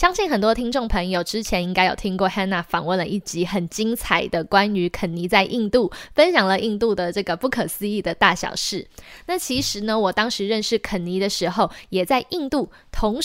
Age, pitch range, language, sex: 20-39, 185-230 Hz, Chinese, female